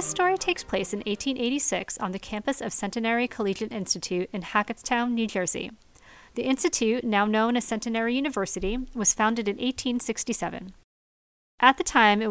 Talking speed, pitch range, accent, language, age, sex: 155 wpm, 200-245 Hz, American, English, 40-59, female